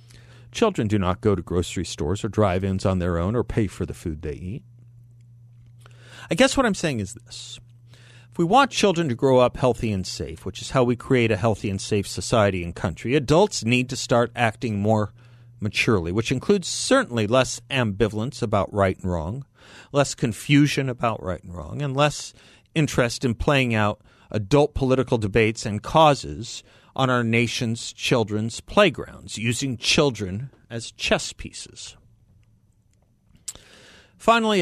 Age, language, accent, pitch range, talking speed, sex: 50-69, English, American, 105-140 Hz, 160 wpm, male